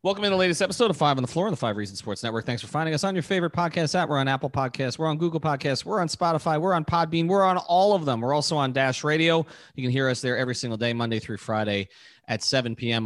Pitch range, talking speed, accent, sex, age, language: 110-150 Hz, 290 wpm, American, male, 30-49, English